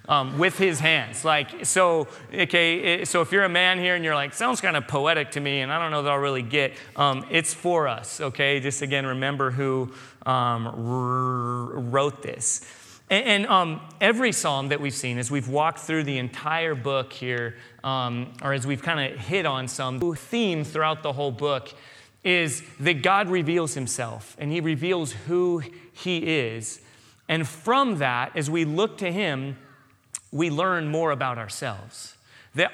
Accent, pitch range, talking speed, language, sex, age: American, 135-175 Hz, 180 wpm, English, male, 30-49